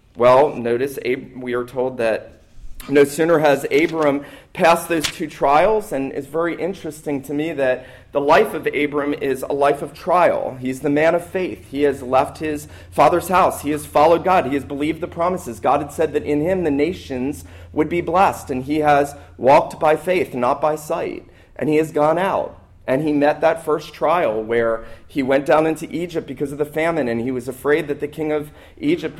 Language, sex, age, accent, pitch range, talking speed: English, male, 40-59, American, 135-160 Hz, 205 wpm